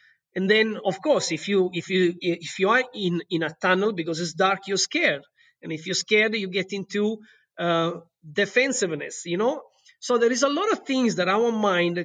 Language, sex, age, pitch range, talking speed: English, male, 30-49, 180-235 Hz, 205 wpm